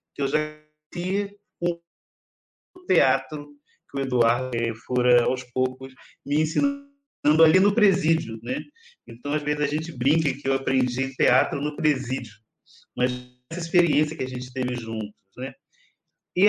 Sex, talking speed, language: male, 140 wpm, Portuguese